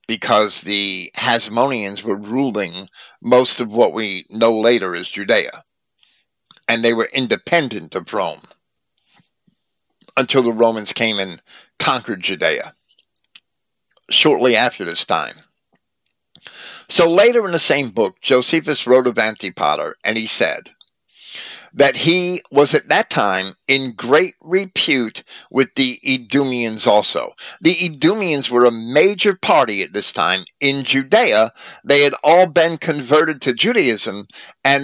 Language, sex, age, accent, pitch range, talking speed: English, male, 50-69, American, 115-155 Hz, 130 wpm